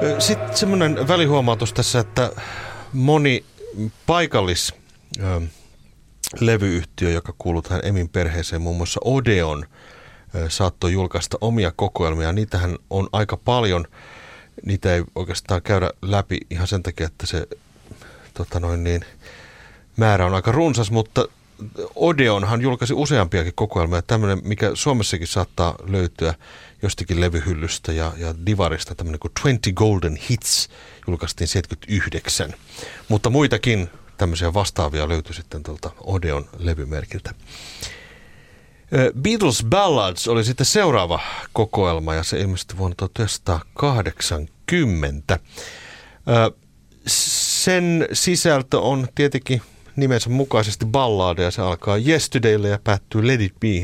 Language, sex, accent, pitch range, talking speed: Finnish, male, native, 85-115 Hz, 110 wpm